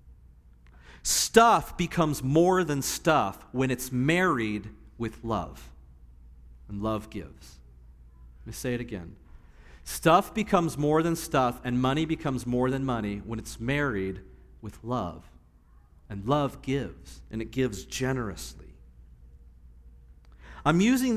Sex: male